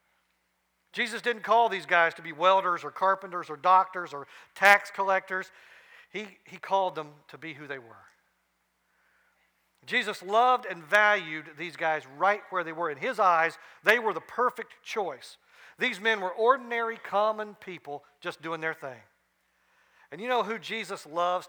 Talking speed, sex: 160 wpm, male